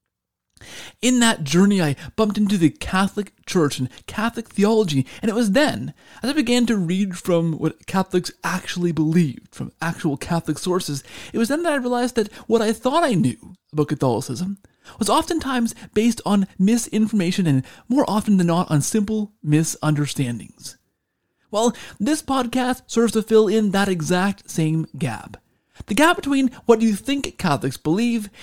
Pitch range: 160-225 Hz